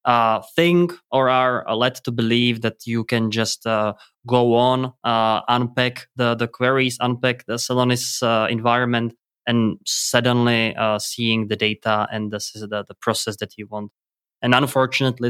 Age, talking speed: 20-39, 160 wpm